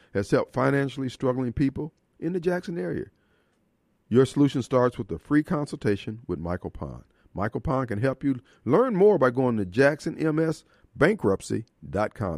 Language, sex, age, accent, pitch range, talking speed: English, male, 40-59, American, 115-155 Hz, 145 wpm